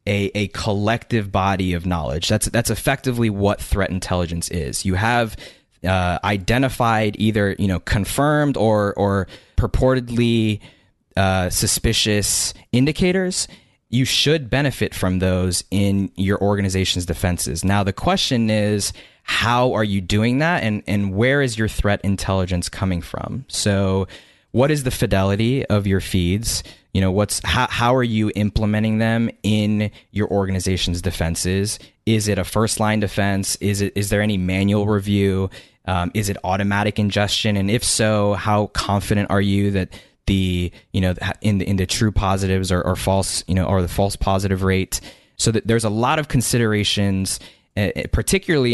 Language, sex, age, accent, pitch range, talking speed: English, male, 20-39, American, 95-115 Hz, 155 wpm